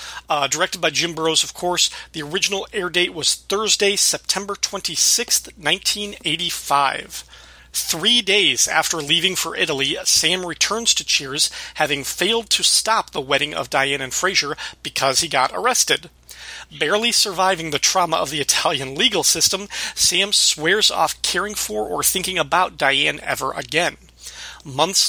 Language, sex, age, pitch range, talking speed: English, male, 40-59, 150-195 Hz, 145 wpm